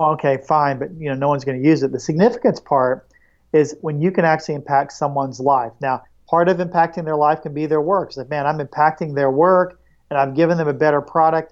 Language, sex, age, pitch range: English, male, 40-59, 145-170 Hz